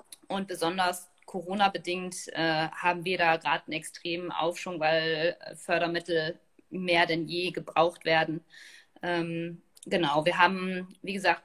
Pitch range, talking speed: 165-190 Hz, 125 wpm